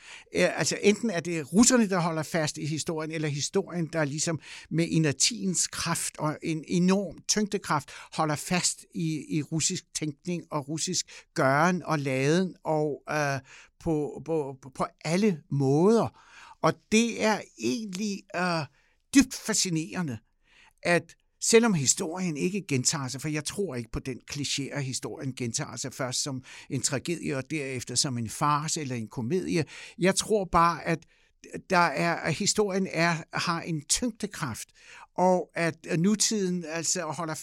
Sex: male